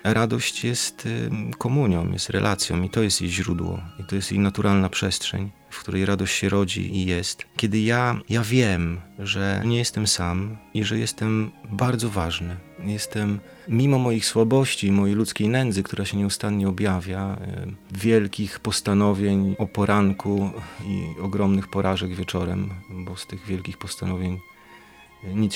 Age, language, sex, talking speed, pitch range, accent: 30-49, Polish, male, 145 wpm, 95-110 Hz, native